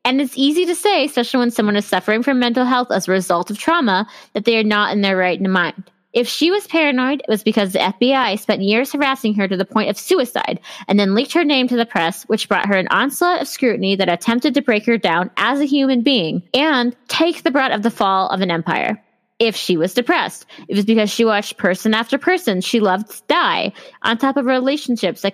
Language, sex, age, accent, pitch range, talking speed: English, female, 20-39, American, 200-265 Hz, 235 wpm